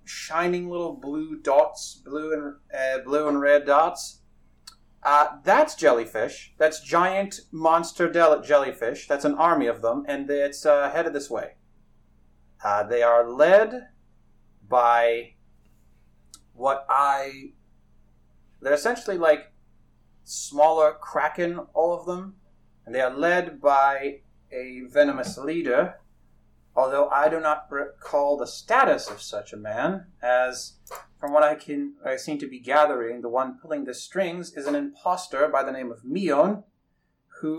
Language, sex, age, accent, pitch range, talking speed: English, male, 30-49, American, 125-165 Hz, 140 wpm